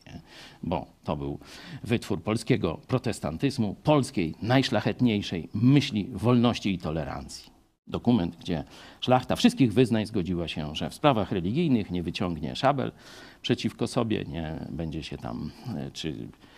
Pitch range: 95-130 Hz